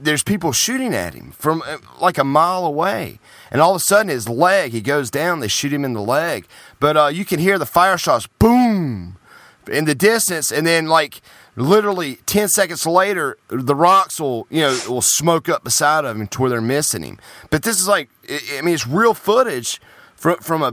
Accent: American